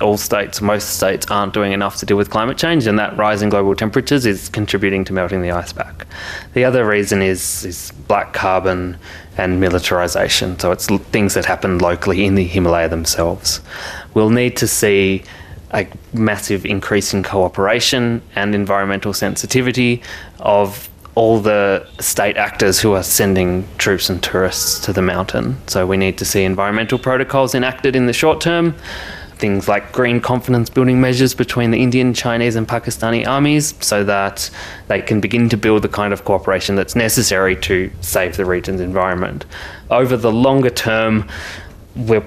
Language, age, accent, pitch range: English, 20-39, Australian, 95-115 Hz